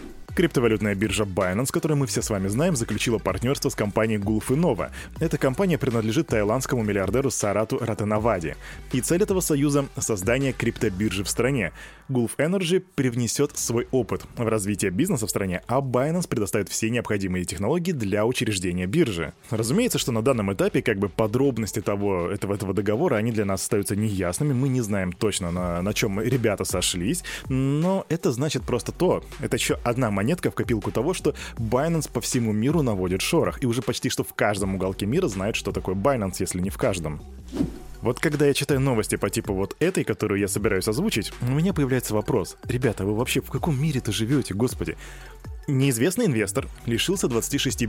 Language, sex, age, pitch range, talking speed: Russian, male, 20-39, 105-140 Hz, 175 wpm